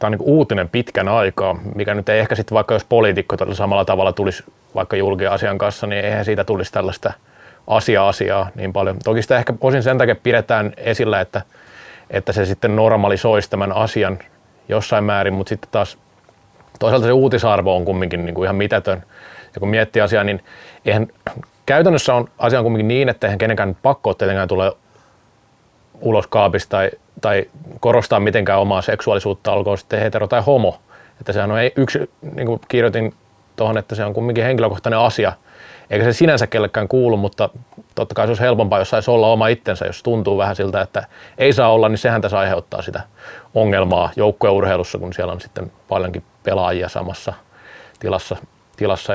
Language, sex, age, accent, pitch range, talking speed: Finnish, male, 30-49, native, 100-120 Hz, 175 wpm